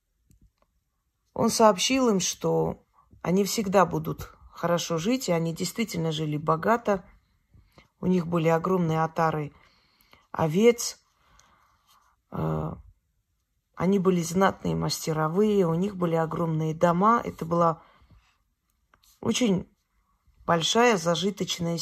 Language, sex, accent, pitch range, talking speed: Russian, female, native, 150-195 Hz, 95 wpm